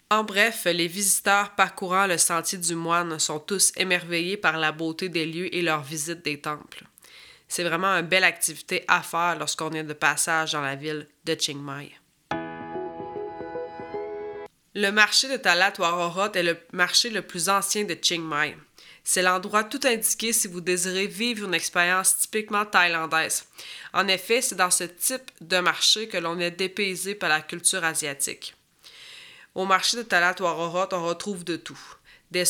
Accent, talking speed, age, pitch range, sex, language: Canadian, 165 wpm, 20-39, 165-195 Hz, female, French